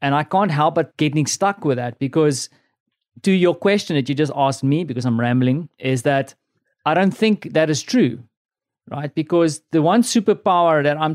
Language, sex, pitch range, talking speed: English, male, 145-185 Hz, 195 wpm